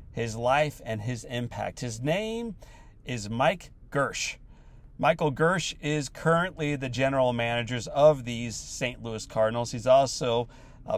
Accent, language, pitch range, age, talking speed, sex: American, English, 115-160 Hz, 40-59, 135 wpm, male